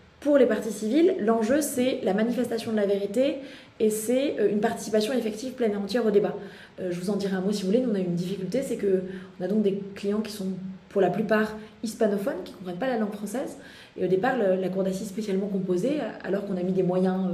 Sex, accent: female, French